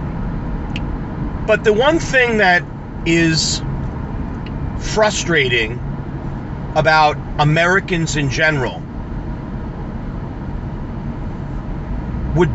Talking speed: 55 wpm